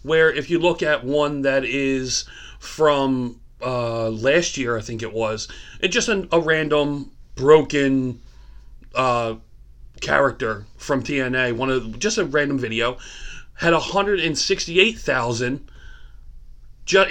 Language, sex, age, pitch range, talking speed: English, male, 40-59, 120-160 Hz, 120 wpm